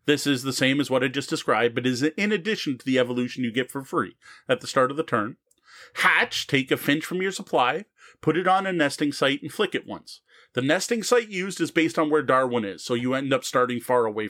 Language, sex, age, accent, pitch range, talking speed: English, male, 30-49, American, 130-195 Hz, 250 wpm